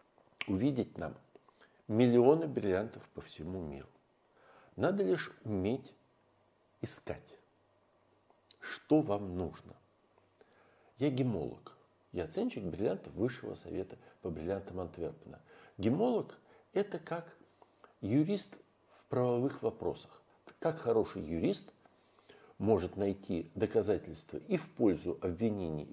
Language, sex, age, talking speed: Russian, male, 60-79, 95 wpm